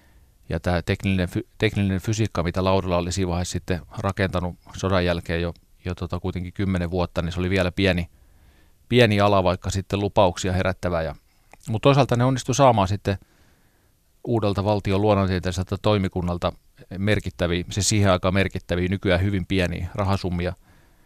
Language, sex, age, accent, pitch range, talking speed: Finnish, male, 30-49, native, 90-100 Hz, 140 wpm